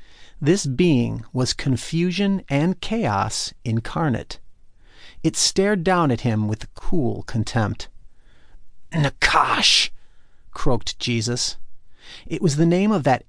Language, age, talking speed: English, 40-59, 110 wpm